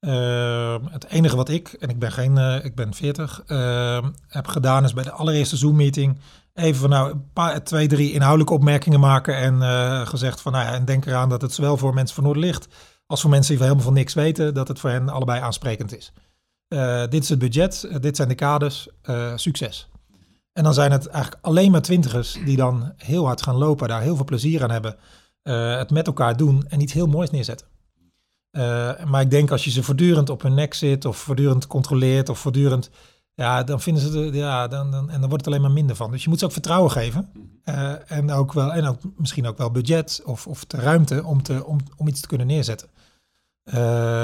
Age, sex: 40-59, male